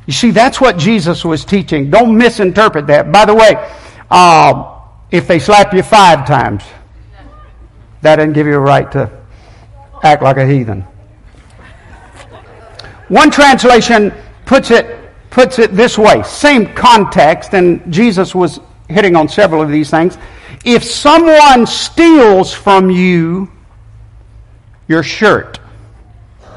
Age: 60-79